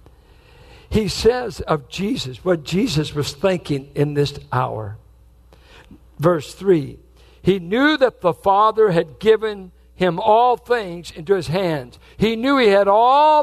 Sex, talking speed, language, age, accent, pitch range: male, 140 wpm, English, 60-79, American, 165-245 Hz